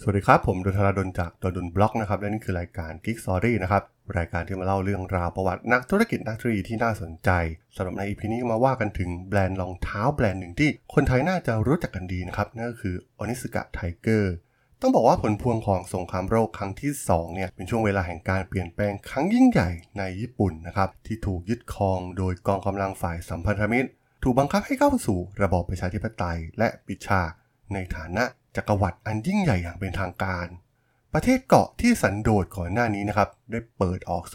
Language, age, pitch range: Thai, 20-39, 95-120 Hz